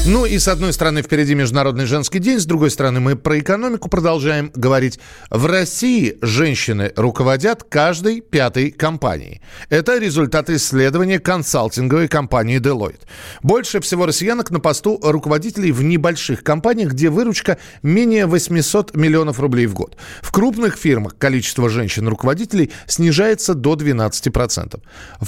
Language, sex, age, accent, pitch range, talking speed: Russian, male, 40-59, native, 120-165 Hz, 130 wpm